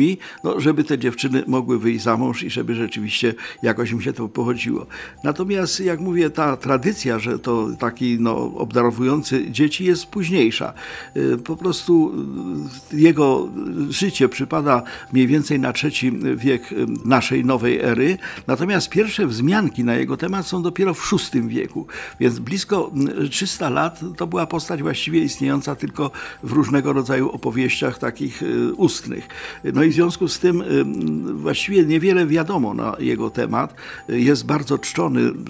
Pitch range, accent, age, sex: 120-165 Hz, native, 50-69, male